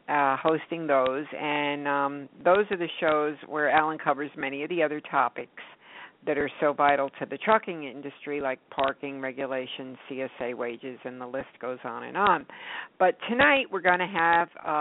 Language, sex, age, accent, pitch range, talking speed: English, female, 60-79, American, 140-175 Hz, 175 wpm